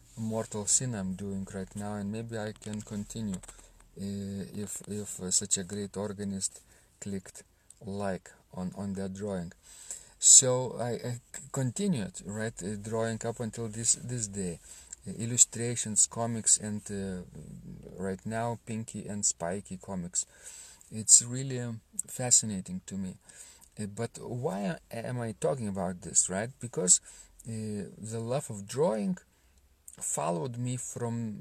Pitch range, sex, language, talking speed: 100-125 Hz, male, English, 140 wpm